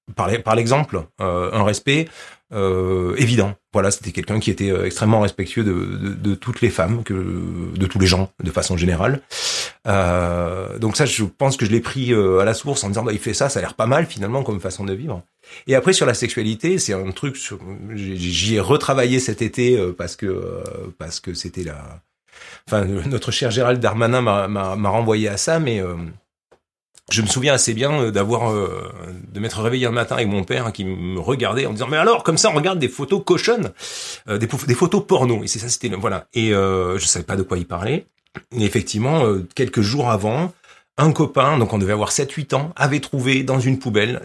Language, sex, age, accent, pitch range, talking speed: French, male, 30-49, French, 95-125 Hz, 215 wpm